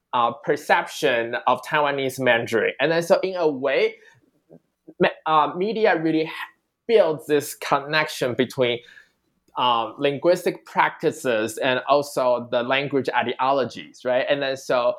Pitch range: 130-165 Hz